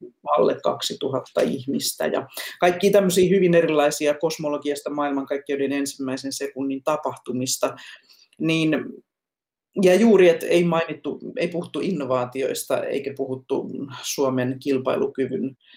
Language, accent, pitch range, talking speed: Finnish, native, 140-185 Hz, 95 wpm